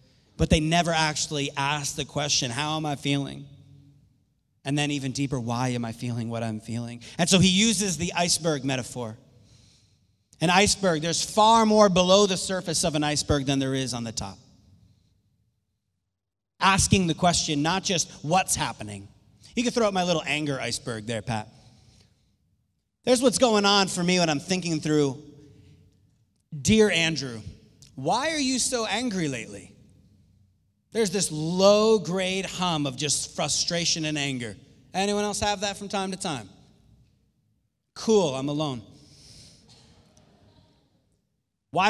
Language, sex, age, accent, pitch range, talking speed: English, male, 30-49, American, 110-170 Hz, 145 wpm